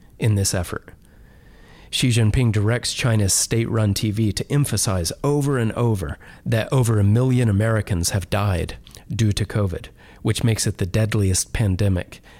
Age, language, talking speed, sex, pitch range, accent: 40-59, English, 145 wpm, male, 95-120 Hz, American